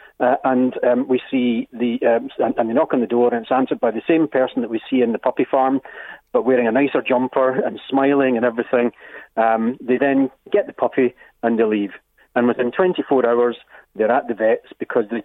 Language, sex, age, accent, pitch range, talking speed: English, male, 40-59, British, 115-135 Hz, 220 wpm